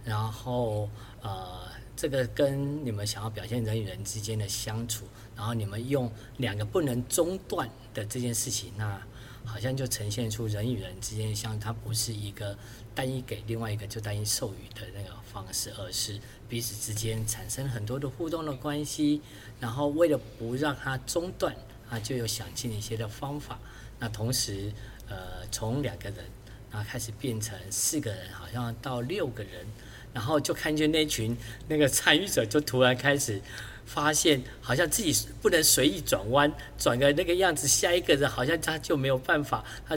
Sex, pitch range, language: male, 110-130 Hz, Chinese